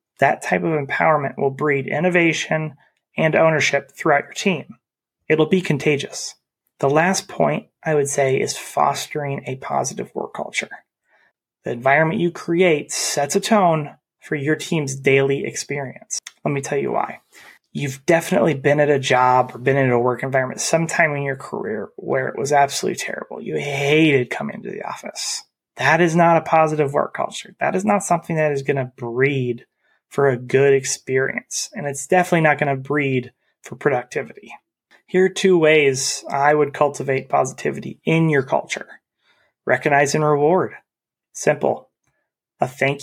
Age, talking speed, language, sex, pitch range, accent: 30-49, 160 wpm, English, male, 135-160 Hz, American